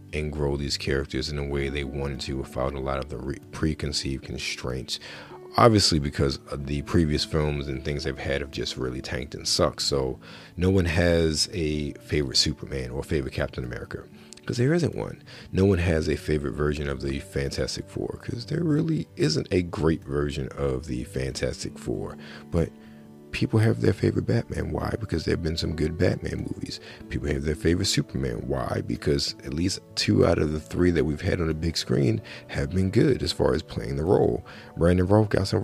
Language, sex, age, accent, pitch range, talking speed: English, male, 40-59, American, 75-100 Hz, 195 wpm